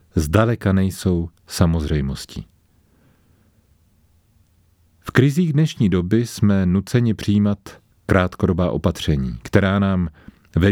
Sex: male